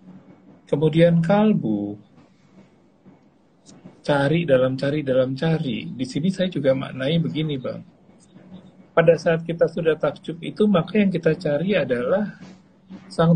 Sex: male